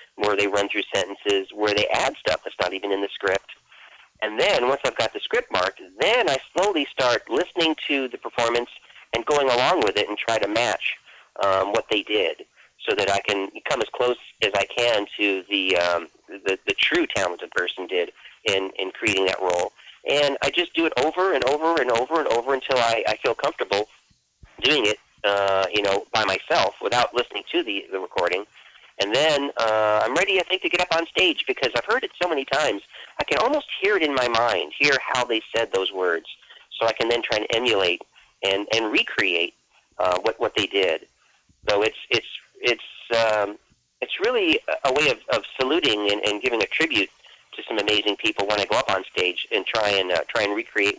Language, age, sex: English, 40-59, male